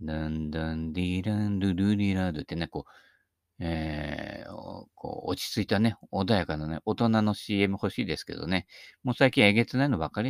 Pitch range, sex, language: 85-115 Hz, male, Japanese